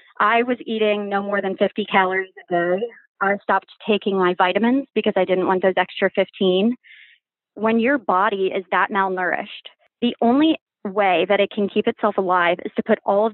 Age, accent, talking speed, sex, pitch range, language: 20-39, American, 190 wpm, female, 195-225 Hz, English